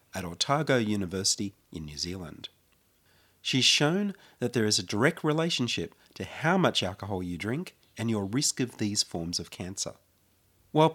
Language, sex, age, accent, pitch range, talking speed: English, male, 40-59, Australian, 100-140 Hz, 160 wpm